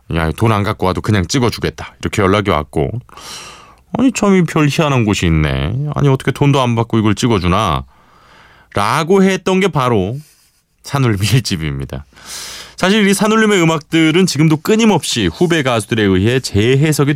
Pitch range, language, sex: 90-145 Hz, Korean, male